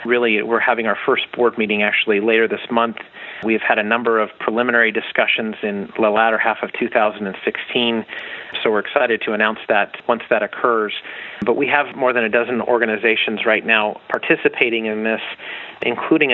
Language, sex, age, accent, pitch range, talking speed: English, male, 40-59, American, 110-120 Hz, 175 wpm